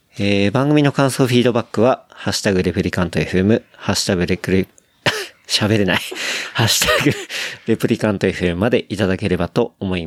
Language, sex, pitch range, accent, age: Japanese, male, 90-115 Hz, native, 40-59